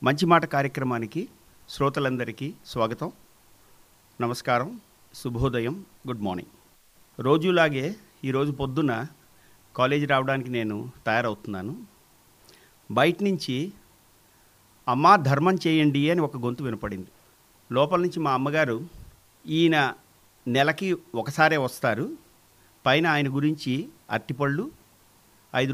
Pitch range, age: 120-165 Hz, 50-69